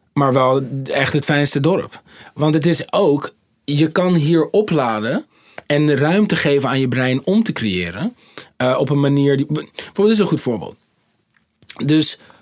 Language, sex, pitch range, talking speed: Dutch, male, 120-150 Hz, 165 wpm